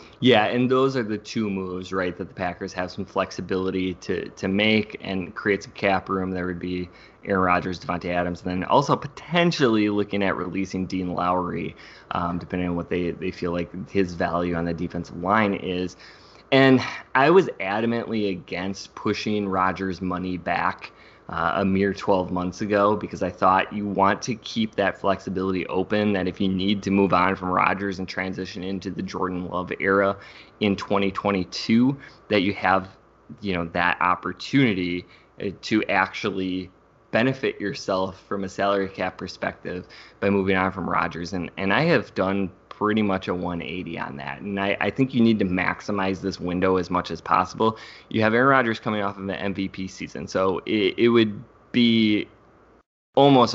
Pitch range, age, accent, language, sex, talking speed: 90-105 Hz, 20-39, American, English, male, 175 wpm